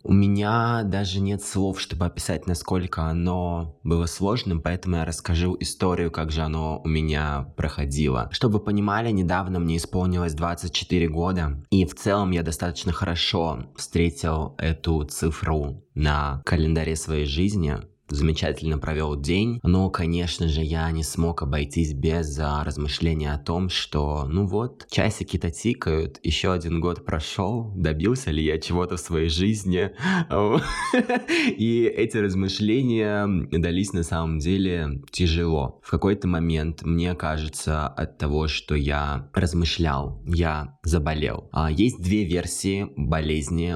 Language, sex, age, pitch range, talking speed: Russian, male, 20-39, 80-95 Hz, 130 wpm